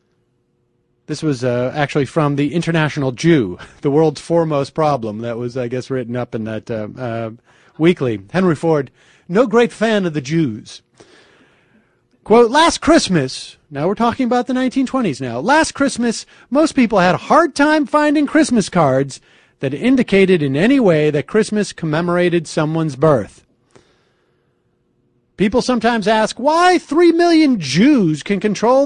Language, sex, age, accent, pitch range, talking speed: English, male, 40-59, American, 150-235 Hz, 150 wpm